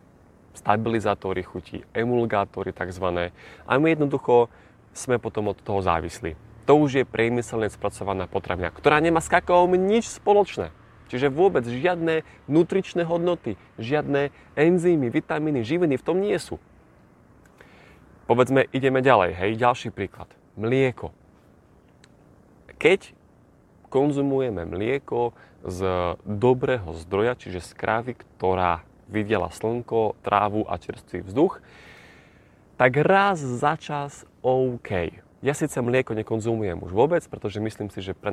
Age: 30-49